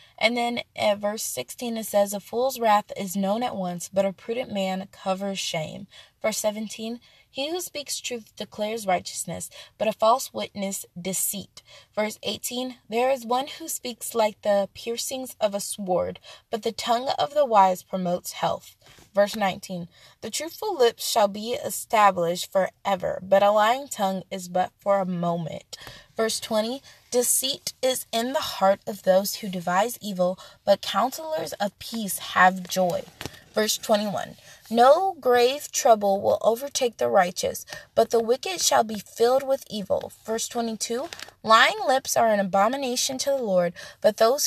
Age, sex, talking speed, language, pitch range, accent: 20-39, female, 160 wpm, English, 195-245 Hz, American